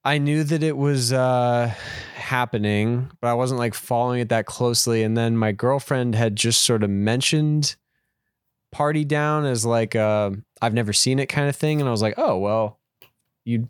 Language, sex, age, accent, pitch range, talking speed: English, male, 20-39, American, 105-125 Hz, 190 wpm